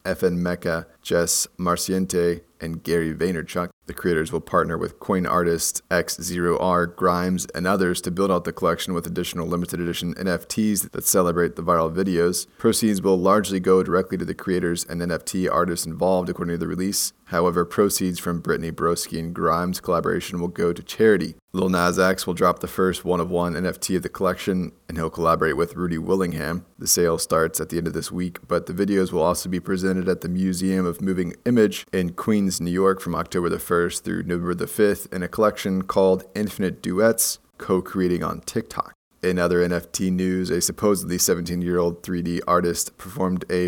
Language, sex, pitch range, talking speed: English, male, 85-95 Hz, 185 wpm